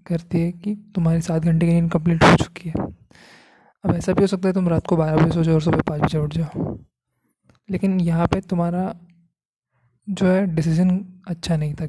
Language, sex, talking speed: Hindi, male, 205 wpm